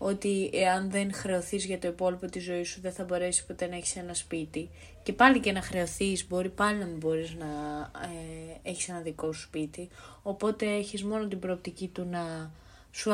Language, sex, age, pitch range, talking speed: Greek, female, 20-39, 175-220 Hz, 195 wpm